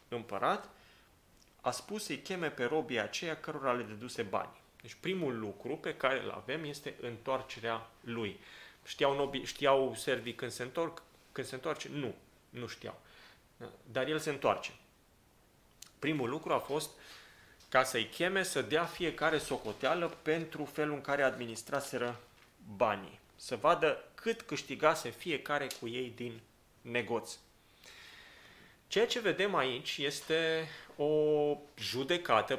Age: 30-49